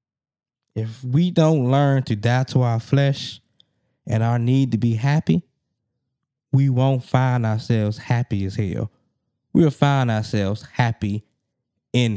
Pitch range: 115-135 Hz